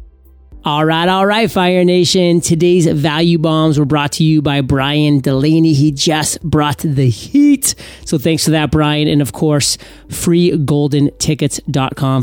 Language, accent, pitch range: English, American, 145-170 Hz